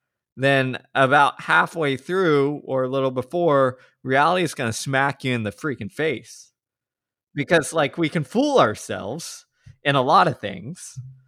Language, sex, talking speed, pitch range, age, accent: English, male, 155 wpm, 115-150 Hz, 20-39, American